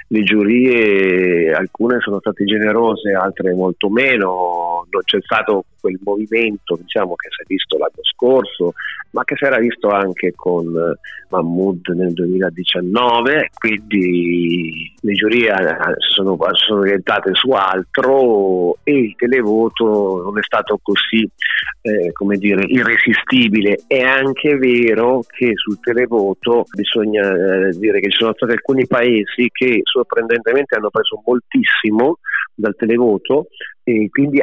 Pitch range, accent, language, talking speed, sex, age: 95-125 Hz, native, Italian, 130 wpm, male, 40-59